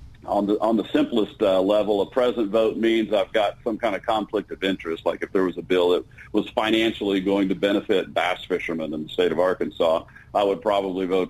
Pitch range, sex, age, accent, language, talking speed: 100-125 Hz, male, 50-69, American, English, 225 wpm